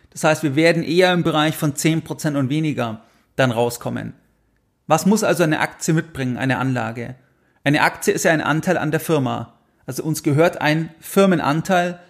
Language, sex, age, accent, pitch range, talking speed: German, male, 40-59, German, 145-175 Hz, 175 wpm